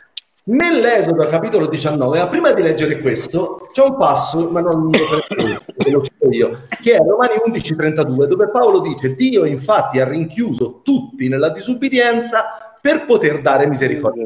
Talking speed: 145 wpm